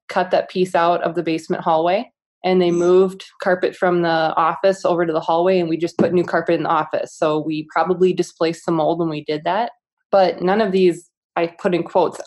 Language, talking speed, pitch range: English, 225 wpm, 160-180 Hz